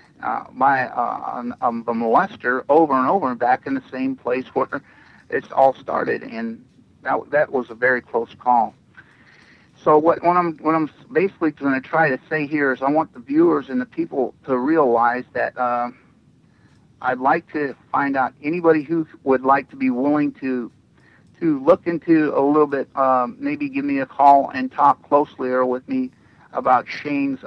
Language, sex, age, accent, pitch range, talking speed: English, male, 50-69, American, 125-150 Hz, 185 wpm